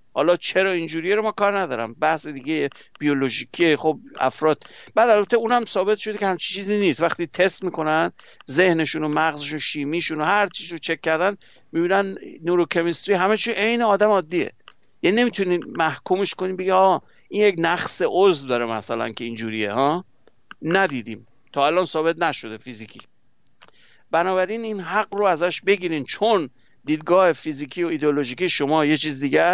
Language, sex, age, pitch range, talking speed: Persian, male, 60-79, 140-185 Hz, 160 wpm